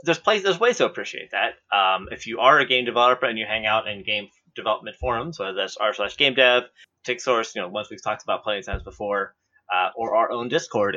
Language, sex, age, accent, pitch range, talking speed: English, male, 20-39, American, 110-130 Hz, 245 wpm